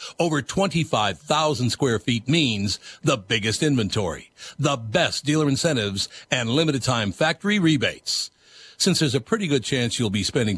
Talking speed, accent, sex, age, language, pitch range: 140 wpm, American, male, 60-79, English, 115-160 Hz